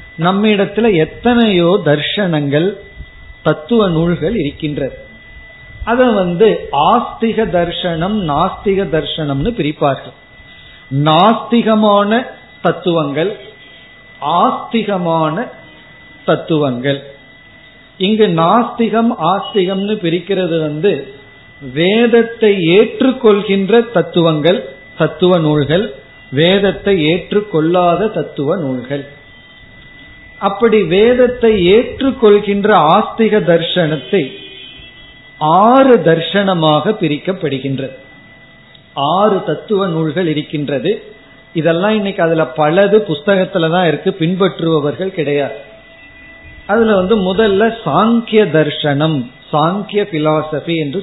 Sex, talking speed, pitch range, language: male, 75 wpm, 150-210 Hz, Tamil